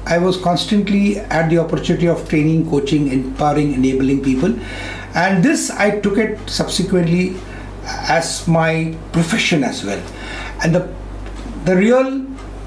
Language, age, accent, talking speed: English, 60-79, Indian, 130 wpm